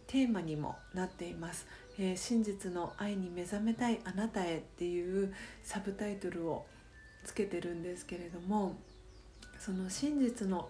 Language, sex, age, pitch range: Japanese, female, 40-59, 175-220 Hz